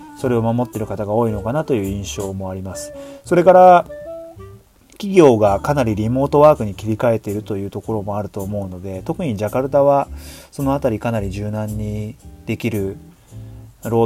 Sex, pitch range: male, 105-135 Hz